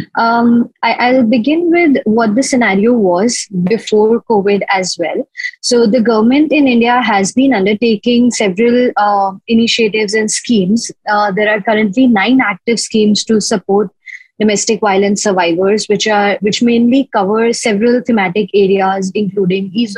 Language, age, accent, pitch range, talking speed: English, 20-39, Indian, 205-255 Hz, 145 wpm